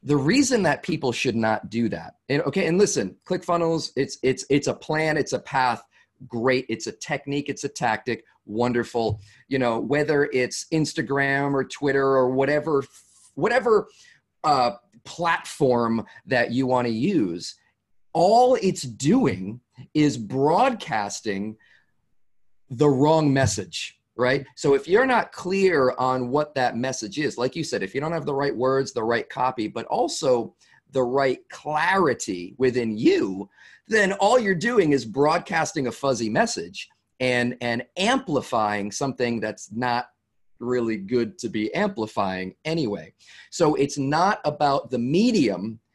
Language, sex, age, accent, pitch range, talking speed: English, male, 40-59, American, 120-155 Hz, 145 wpm